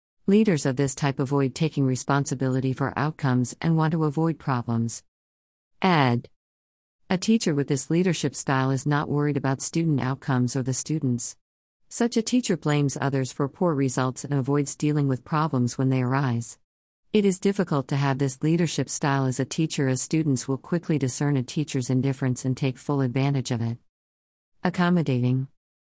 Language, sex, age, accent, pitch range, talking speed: English, female, 50-69, American, 130-155 Hz, 165 wpm